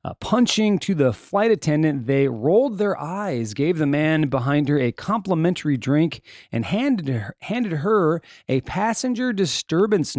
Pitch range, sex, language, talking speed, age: 130-190 Hz, male, English, 145 wpm, 30-49